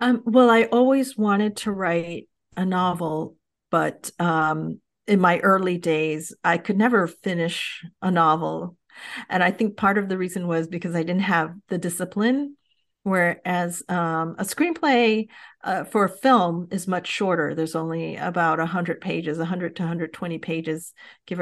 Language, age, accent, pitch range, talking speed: English, 40-59, American, 165-205 Hz, 155 wpm